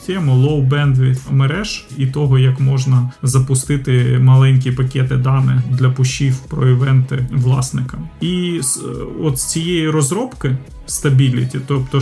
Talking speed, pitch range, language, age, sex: 130 wpm, 130-140 Hz, Ukrainian, 30-49, male